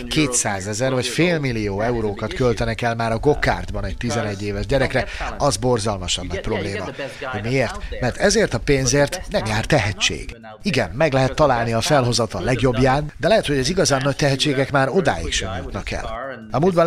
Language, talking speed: Hungarian, 180 wpm